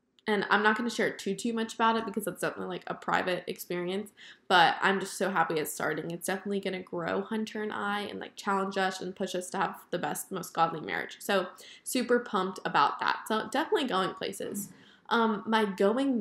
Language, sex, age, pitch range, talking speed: English, female, 10-29, 185-220 Hz, 220 wpm